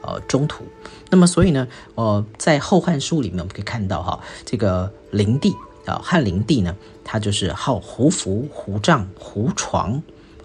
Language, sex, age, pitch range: Chinese, male, 50-69, 100-135 Hz